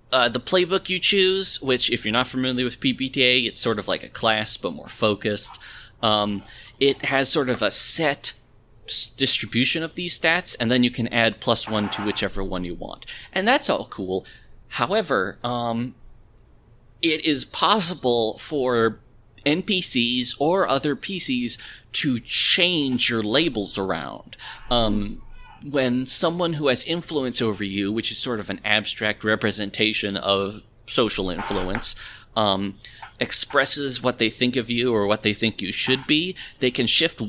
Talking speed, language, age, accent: 160 wpm, English, 30-49, American